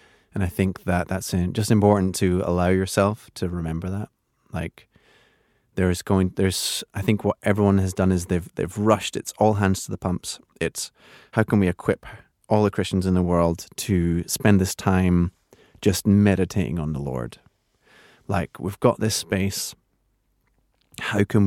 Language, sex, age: English, male, 20-39